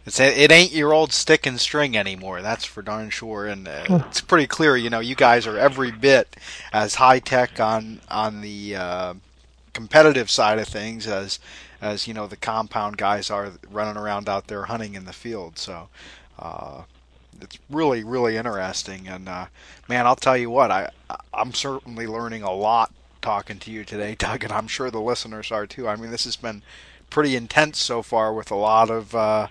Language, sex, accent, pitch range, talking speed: English, male, American, 100-130 Hz, 200 wpm